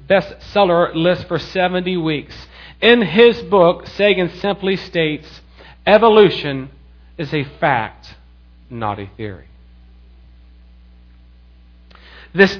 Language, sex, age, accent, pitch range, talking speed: English, male, 40-59, American, 120-190 Hz, 90 wpm